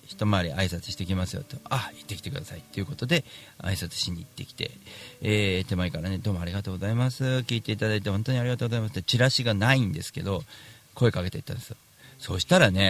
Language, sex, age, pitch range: Japanese, male, 40-59, 95-145 Hz